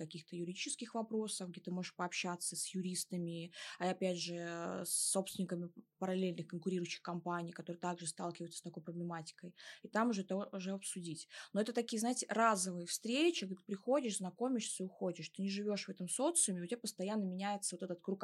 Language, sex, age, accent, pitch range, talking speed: Russian, female, 20-39, native, 175-210 Hz, 175 wpm